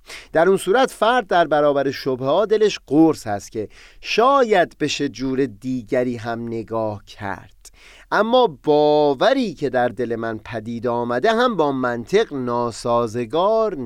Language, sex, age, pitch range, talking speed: Persian, male, 30-49, 120-195 Hz, 135 wpm